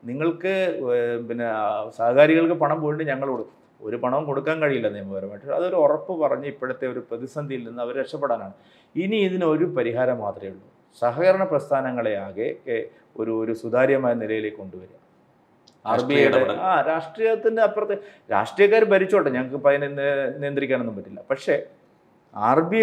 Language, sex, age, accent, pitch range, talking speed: Malayalam, male, 30-49, native, 120-160 Hz, 130 wpm